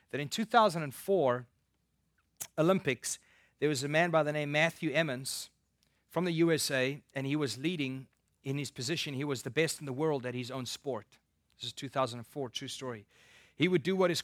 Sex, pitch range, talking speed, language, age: male, 135-180 Hz, 185 wpm, English, 30-49